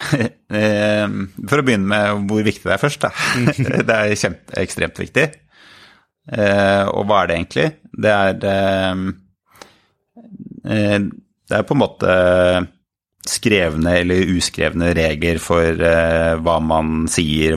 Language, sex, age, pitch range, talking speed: English, male, 30-49, 85-100 Hz, 125 wpm